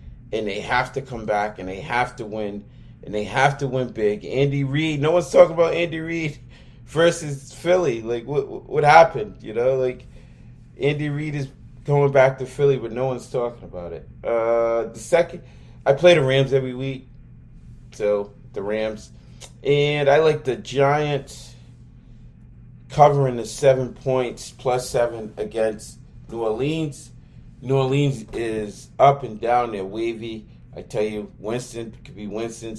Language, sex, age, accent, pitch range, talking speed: English, male, 30-49, American, 110-140 Hz, 160 wpm